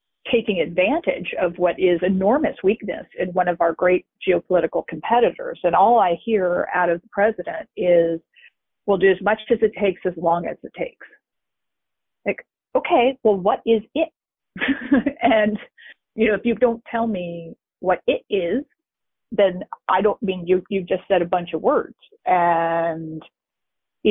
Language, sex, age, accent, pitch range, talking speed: English, female, 40-59, American, 180-235 Hz, 160 wpm